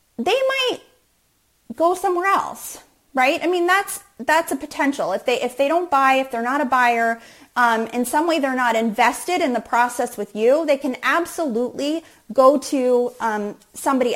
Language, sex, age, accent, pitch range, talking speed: English, female, 30-49, American, 240-315 Hz, 180 wpm